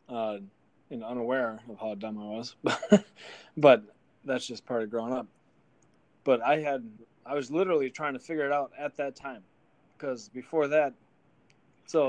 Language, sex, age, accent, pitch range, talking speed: English, male, 20-39, American, 120-145 Hz, 165 wpm